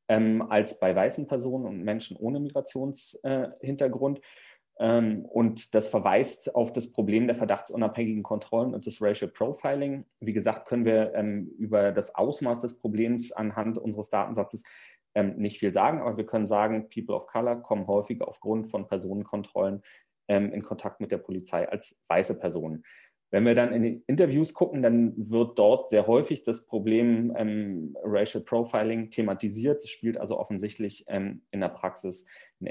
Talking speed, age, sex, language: 150 wpm, 30-49, male, German